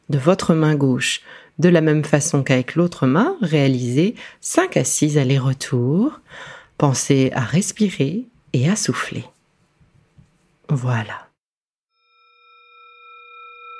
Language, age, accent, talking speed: French, 40-59, French, 100 wpm